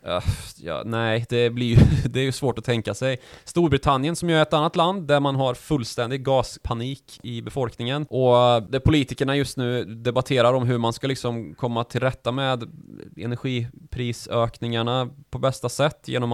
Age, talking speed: 20-39, 175 wpm